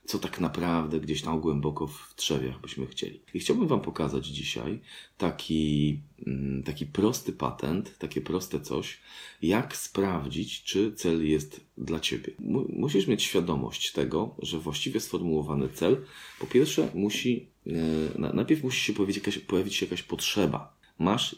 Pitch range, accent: 80-105 Hz, native